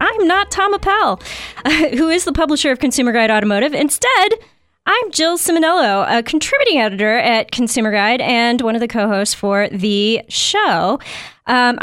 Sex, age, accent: female, 20-39, American